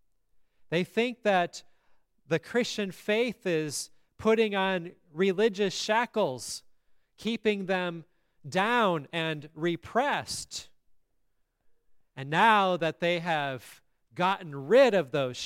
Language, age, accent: English, 30-49, American